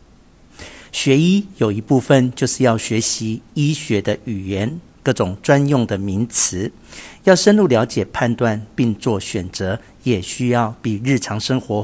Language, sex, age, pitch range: Chinese, male, 50-69, 105-130 Hz